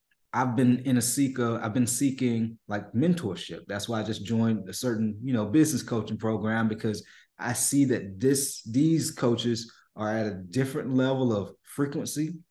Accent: American